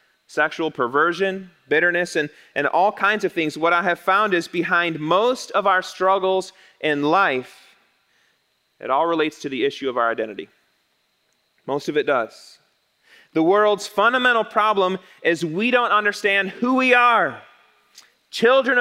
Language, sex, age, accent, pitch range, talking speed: English, male, 30-49, American, 160-215 Hz, 145 wpm